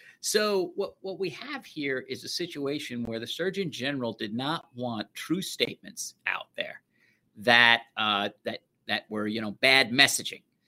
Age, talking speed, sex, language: 50-69, 165 wpm, male, English